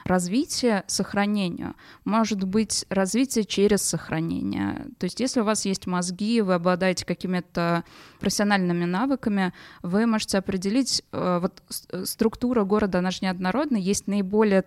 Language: Russian